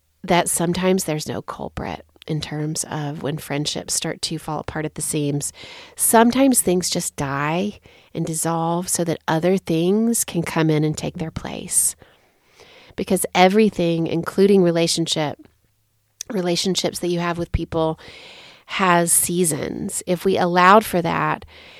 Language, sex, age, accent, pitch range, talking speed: English, female, 30-49, American, 155-185 Hz, 140 wpm